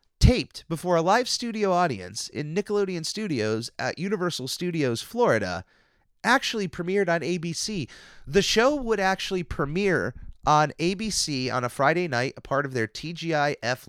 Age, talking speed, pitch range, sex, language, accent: 30-49, 145 wpm, 125-175 Hz, male, English, American